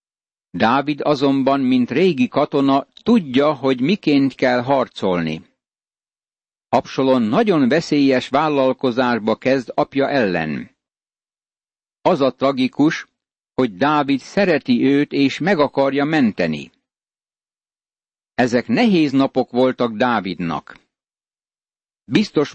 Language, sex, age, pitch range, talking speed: Hungarian, male, 60-79, 125-155 Hz, 90 wpm